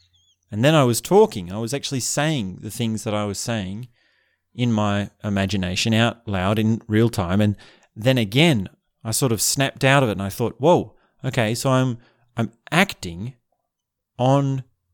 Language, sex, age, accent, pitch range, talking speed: English, male, 30-49, Australian, 95-125 Hz, 175 wpm